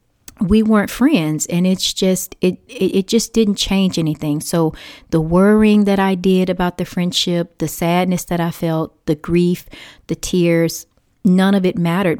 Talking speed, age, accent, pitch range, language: 165 wpm, 30-49, American, 165-195 Hz, English